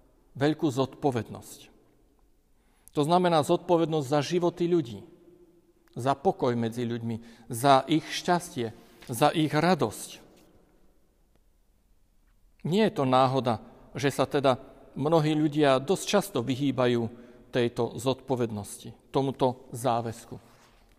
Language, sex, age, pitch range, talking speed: Slovak, male, 50-69, 130-170 Hz, 95 wpm